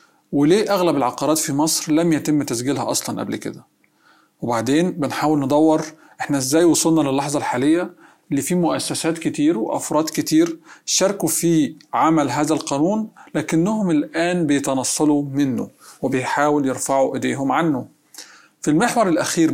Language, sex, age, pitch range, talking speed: Arabic, male, 40-59, 140-165 Hz, 125 wpm